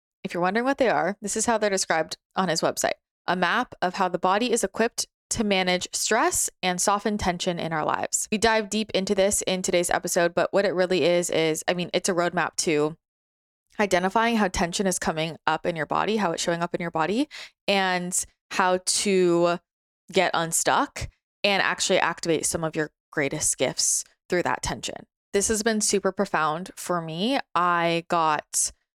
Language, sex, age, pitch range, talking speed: English, female, 20-39, 165-205 Hz, 190 wpm